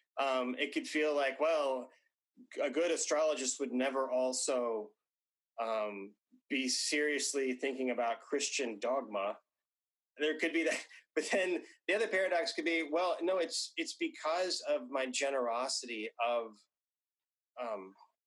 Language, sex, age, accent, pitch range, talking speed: English, male, 30-49, American, 125-185 Hz, 130 wpm